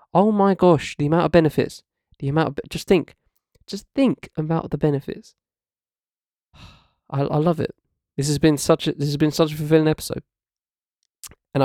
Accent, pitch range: British, 130-155 Hz